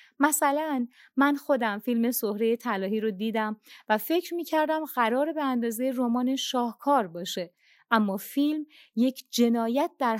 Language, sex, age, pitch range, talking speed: Persian, female, 30-49, 215-280 Hz, 130 wpm